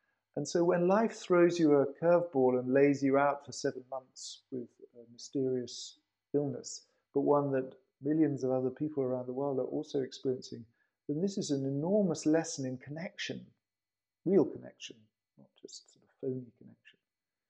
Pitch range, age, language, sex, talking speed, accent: 120-140 Hz, 50-69, English, male, 160 wpm, British